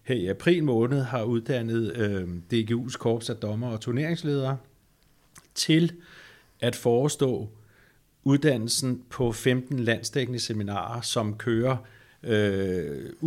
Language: Danish